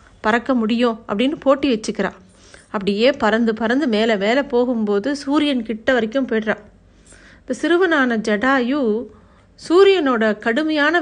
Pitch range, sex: 210-260 Hz, female